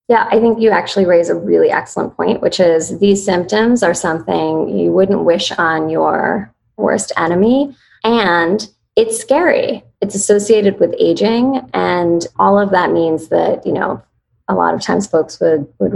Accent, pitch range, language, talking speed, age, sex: American, 170-215 Hz, English, 170 wpm, 20-39, female